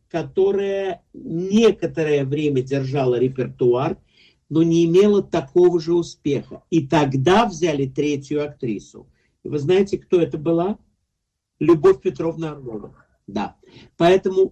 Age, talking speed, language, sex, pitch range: 50-69, 110 wpm, Russian, male, 140-175 Hz